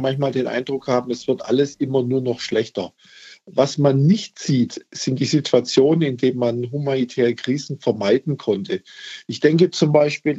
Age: 50-69